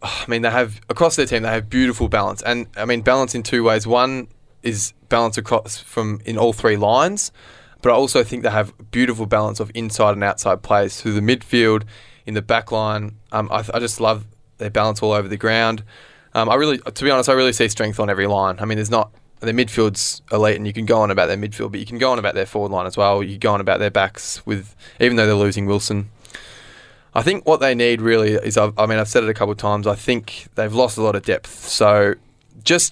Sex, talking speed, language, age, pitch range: male, 250 wpm, English, 20-39, 105-115 Hz